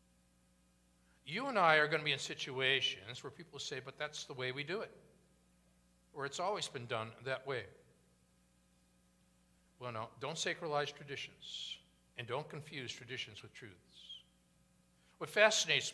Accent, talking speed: American, 145 wpm